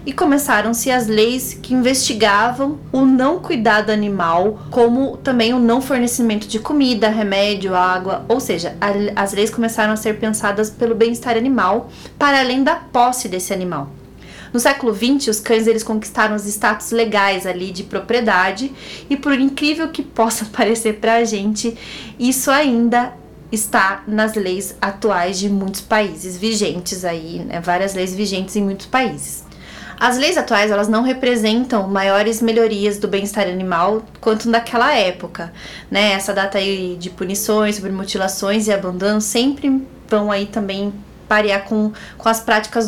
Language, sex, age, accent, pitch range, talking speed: Portuguese, female, 20-39, Brazilian, 200-235 Hz, 155 wpm